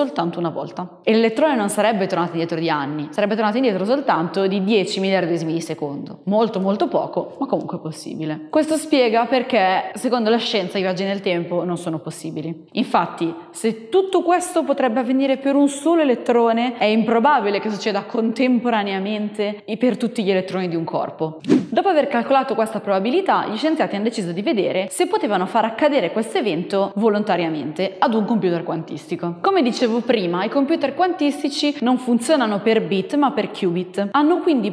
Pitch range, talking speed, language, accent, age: 190-280 Hz, 170 wpm, Italian, native, 20-39